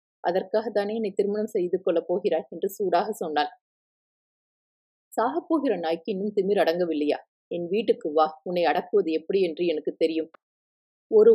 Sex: female